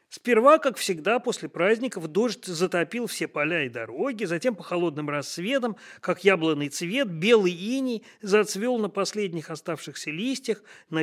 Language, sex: Russian, male